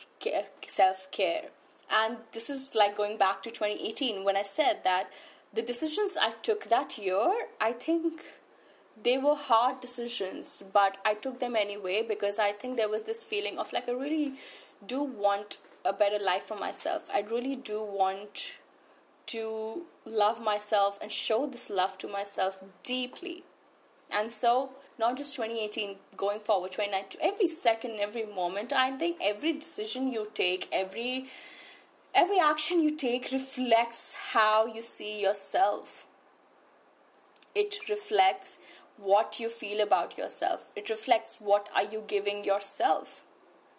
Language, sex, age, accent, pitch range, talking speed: English, female, 20-39, Indian, 205-265 Hz, 145 wpm